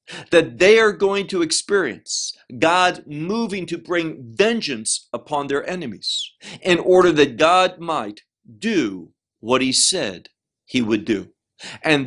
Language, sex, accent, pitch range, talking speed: English, male, American, 125-190 Hz, 135 wpm